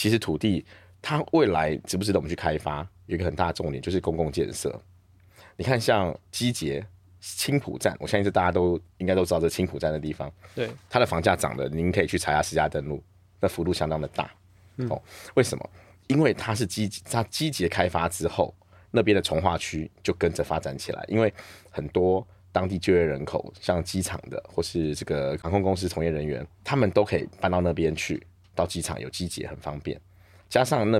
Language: Chinese